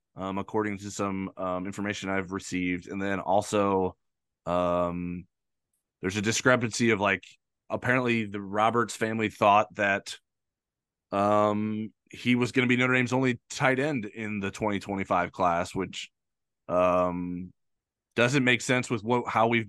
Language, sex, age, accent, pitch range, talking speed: English, male, 20-39, American, 95-120 Hz, 145 wpm